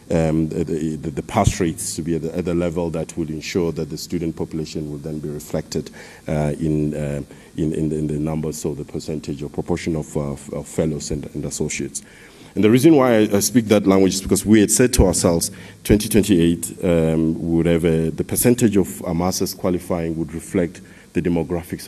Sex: male